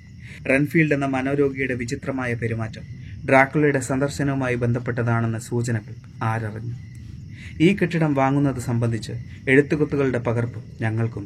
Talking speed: 90 wpm